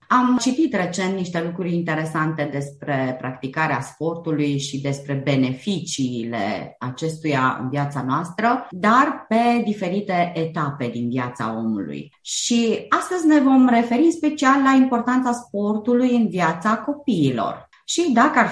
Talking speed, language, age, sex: 125 wpm, Romanian, 30-49, female